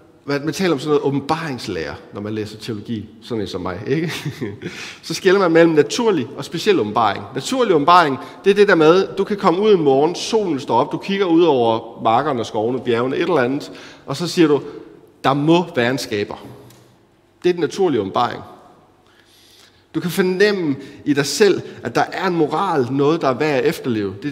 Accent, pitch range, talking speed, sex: native, 115-170 Hz, 205 wpm, male